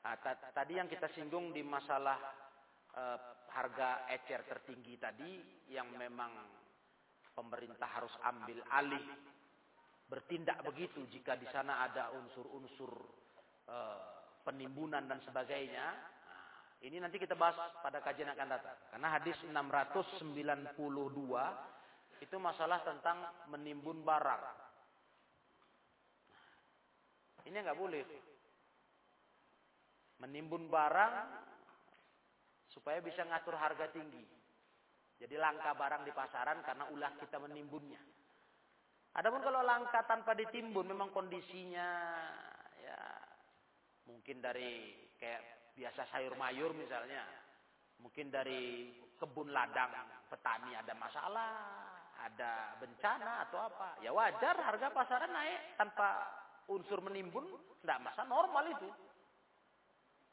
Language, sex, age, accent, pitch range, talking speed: Indonesian, male, 40-59, native, 130-170 Hz, 100 wpm